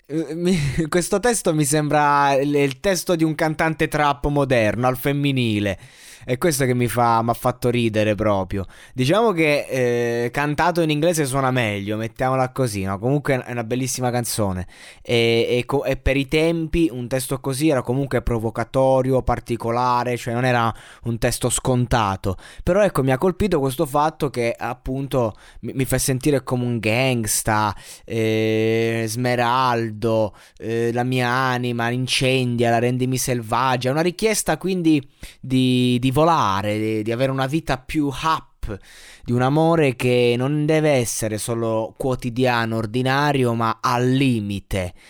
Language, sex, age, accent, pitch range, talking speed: Italian, male, 20-39, native, 110-135 Hz, 145 wpm